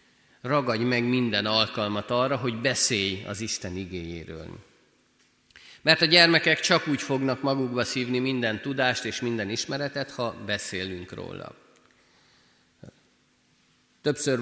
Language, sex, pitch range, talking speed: Hungarian, male, 100-130 Hz, 110 wpm